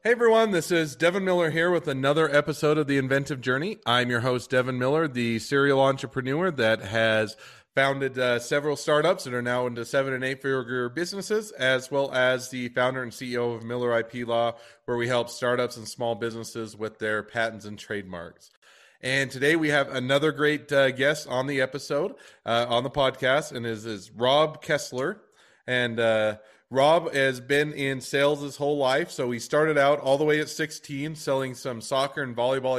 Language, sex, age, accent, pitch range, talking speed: English, male, 30-49, American, 120-145 Hz, 190 wpm